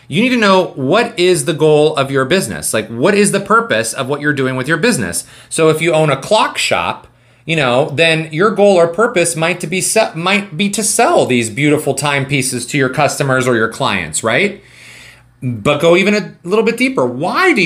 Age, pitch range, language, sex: 30-49, 130-180 Hz, English, male